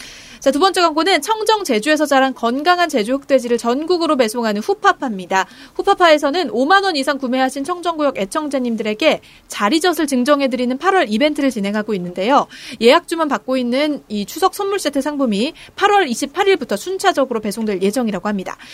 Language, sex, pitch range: Korean, female, 225-325 Hz